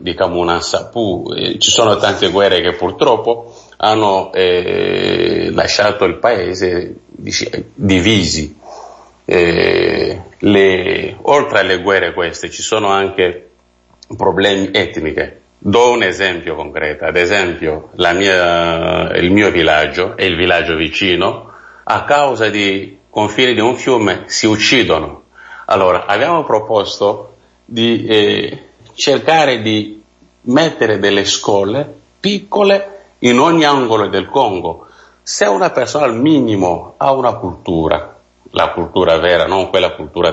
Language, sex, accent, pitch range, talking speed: Italian, male, native, 95-150 Hz, 120 wpm